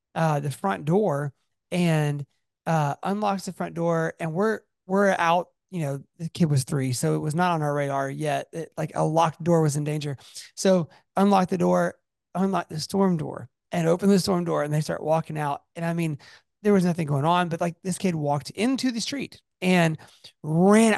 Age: 30-49